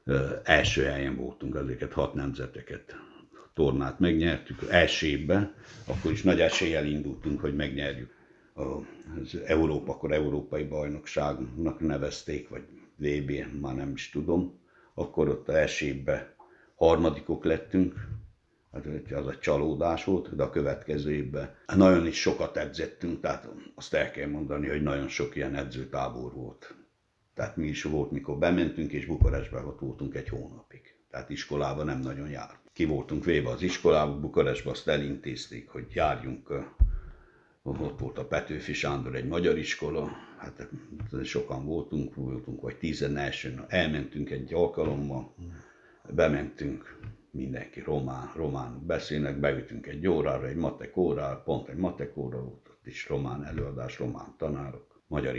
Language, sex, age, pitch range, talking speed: Hungarian, male, 60-79, 70-80 Hz, 130 wpm